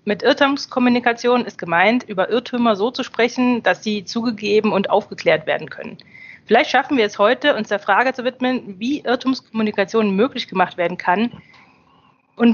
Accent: German